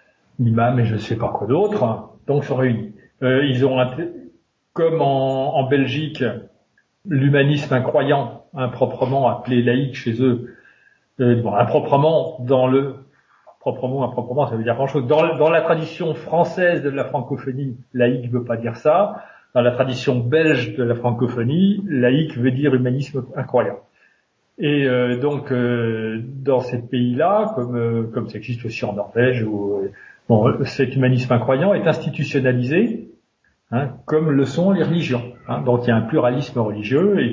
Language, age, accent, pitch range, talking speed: French, 40-59, French, 120-145 Hz, 160 wpm